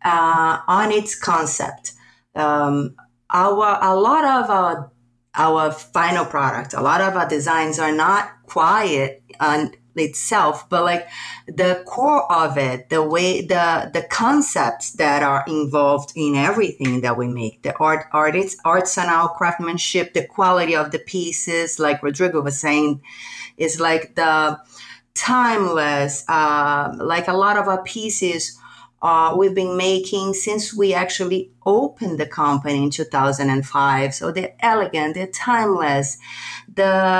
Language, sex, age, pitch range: English, female, 30-49, 150-190 Hz